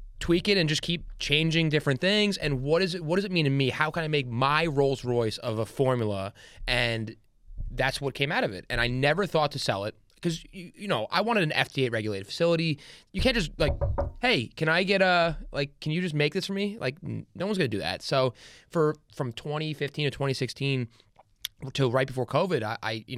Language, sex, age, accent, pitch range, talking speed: English, male, 20-39, American, 115-145 Hz, 230 wpm